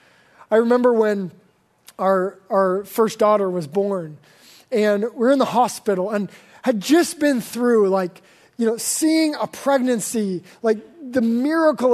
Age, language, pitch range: 20-39, English, 200-260 Hz